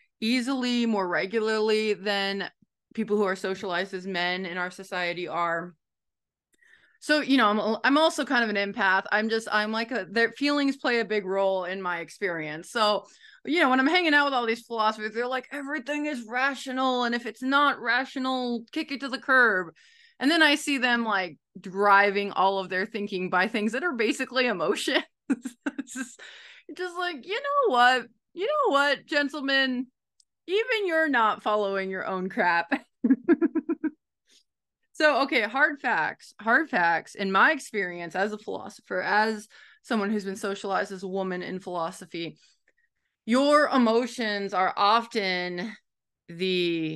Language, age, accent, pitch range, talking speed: English, 20-39, American, 190-270 Hz, 160 wpm